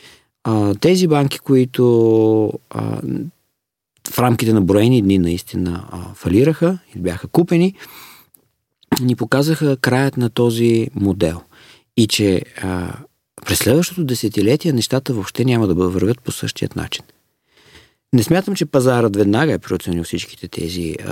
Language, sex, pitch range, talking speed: Bulgarian, male, 100-125 Hz, 115 wpm